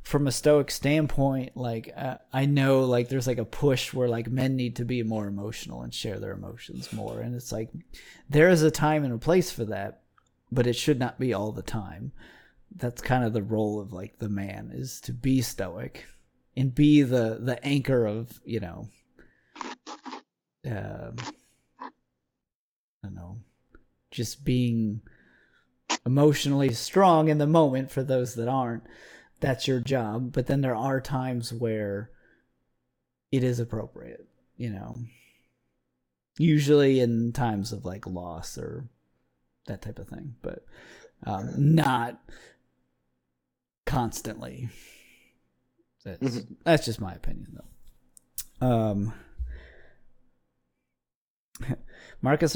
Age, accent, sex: 30-49, American, male